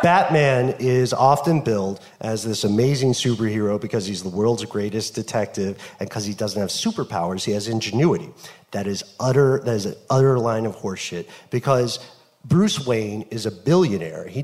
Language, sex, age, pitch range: English, male, 40-59, 110-150 Hz